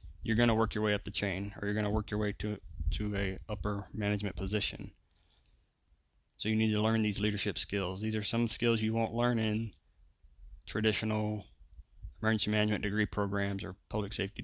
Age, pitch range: 20-39, 90-110 Hz